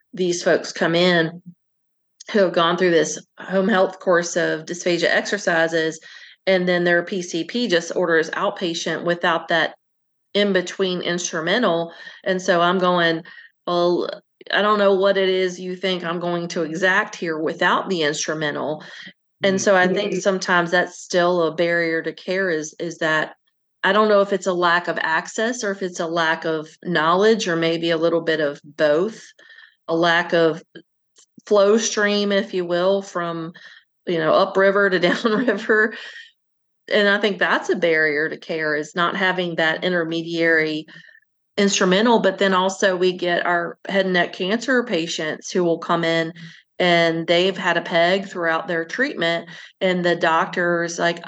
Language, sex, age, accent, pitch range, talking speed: English, female, 40-59, American, 170-200 Hz, 165 wpm